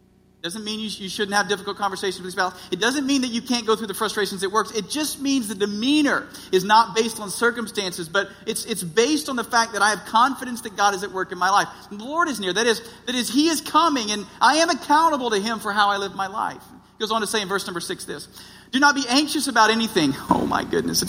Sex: male